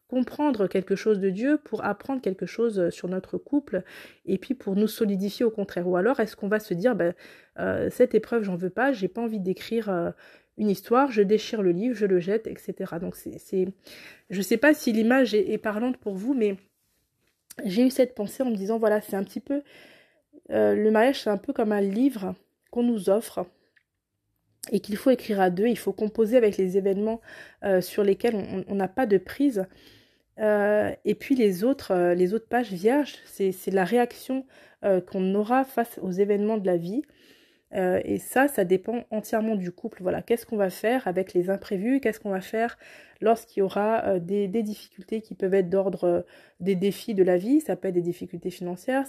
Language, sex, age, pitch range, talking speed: French, female, 20-39, 190-235 Hz, 210 wpm